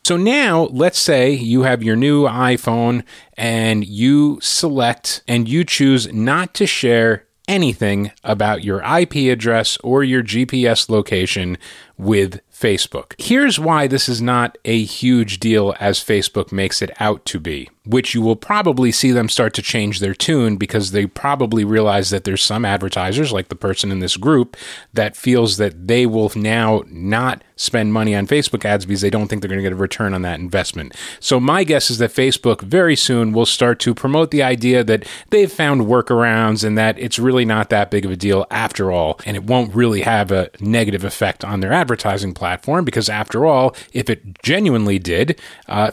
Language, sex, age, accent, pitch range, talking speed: English, male, 30-49, American, 100-130 Hz, 190 wpm